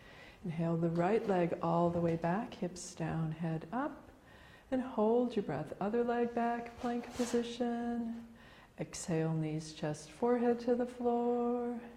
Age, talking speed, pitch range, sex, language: 40-59, 140 wpm, 170-235 Hz, female, English